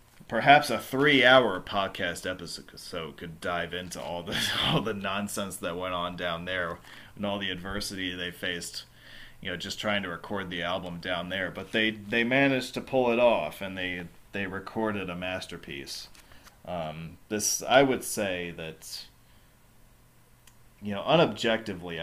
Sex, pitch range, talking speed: male, 90-120 Hz, 160 wpm